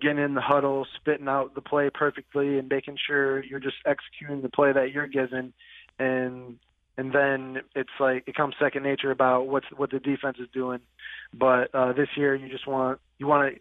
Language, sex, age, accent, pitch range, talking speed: English, male, 20-39, American, 125-140 Hz, 205 wpm